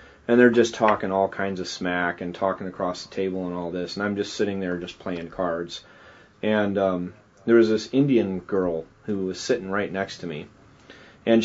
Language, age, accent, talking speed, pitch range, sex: English, 30-49, American, 205 wpm, 95-115 Hz, male